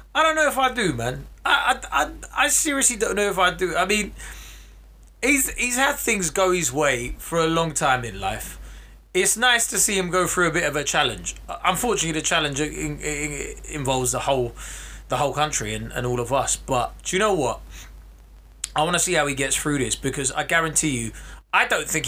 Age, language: 20-39, English